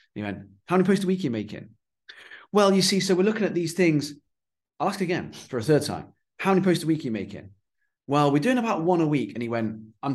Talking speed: 265 wpm